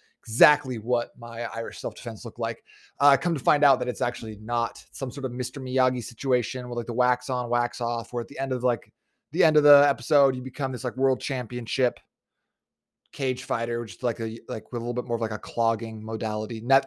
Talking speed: 230 wpm